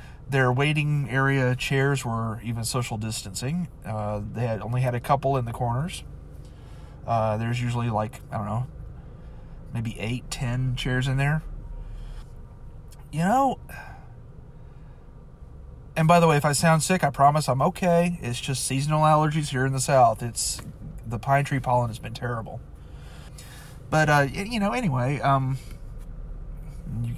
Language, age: English, 30-49